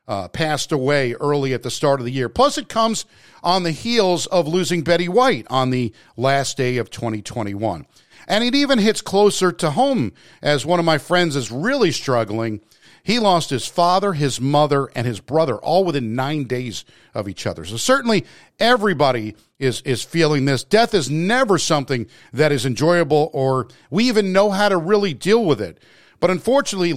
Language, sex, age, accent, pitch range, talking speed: English, male, 50-69, American, 130-175 Hz, 185 wpm